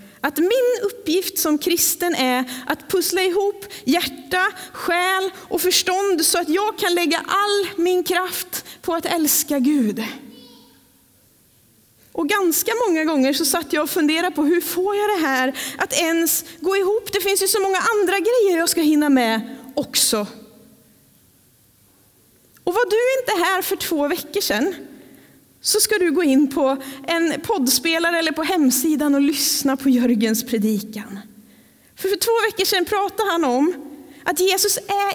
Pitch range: 250-365 Hz